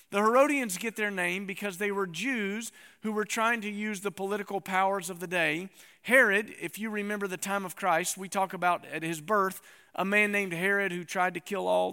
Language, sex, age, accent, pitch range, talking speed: English, male, 40-59, American, 165-210 Hz, 215 wpm